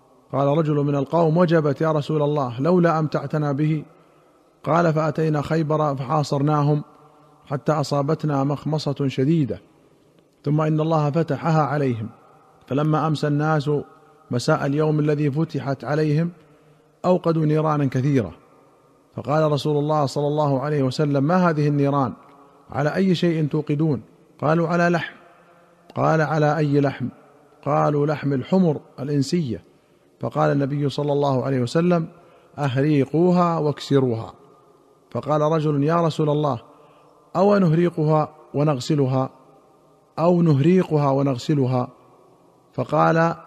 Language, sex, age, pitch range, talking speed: Arabic, male, 40-59, 140-160 Hz, 110 wpm